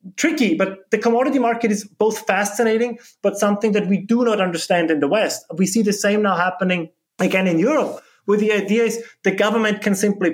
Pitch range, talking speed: 160-205 Hz, 205 wpm